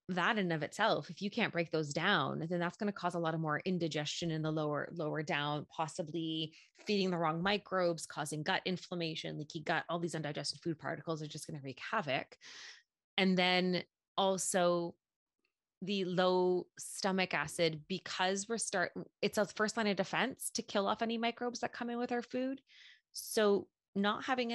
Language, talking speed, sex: English, 190 wpm, female